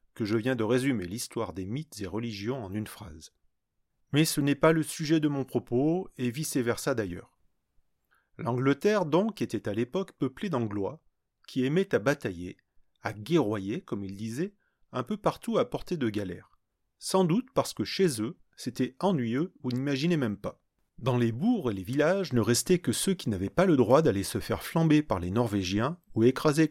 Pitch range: 105-150 Hz